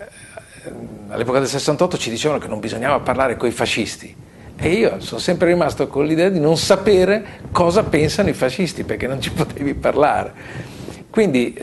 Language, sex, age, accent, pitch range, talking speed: Italian, male, 50-69, native, 105-135 Hz, 165 wpm